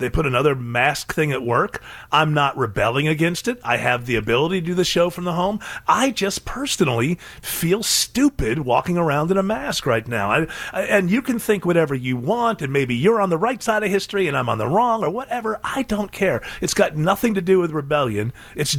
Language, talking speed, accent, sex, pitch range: English, 220 wpm, American, male, 135-205 Hz